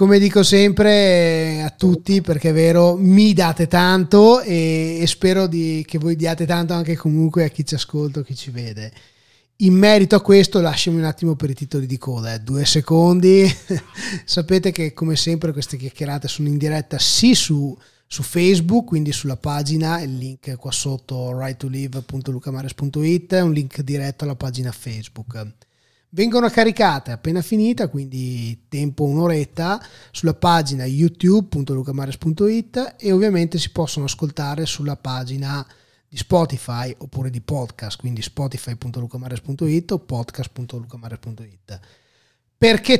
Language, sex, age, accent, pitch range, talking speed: Italian, male, 20-39, native, 130-175 Hz, 135 wpm